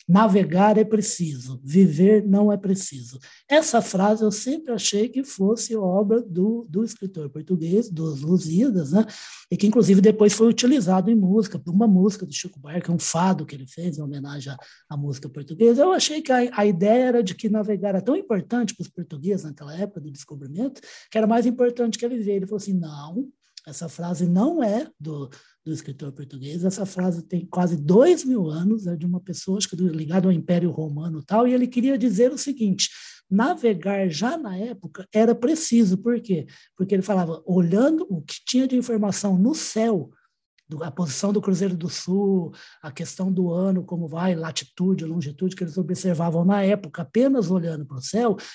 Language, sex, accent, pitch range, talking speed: Portuguese, male, Brazilian, 170-225 Hz, 190 wpm